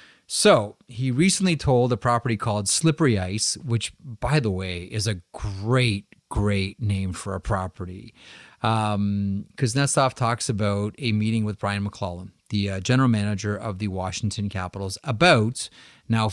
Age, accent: 30-49, American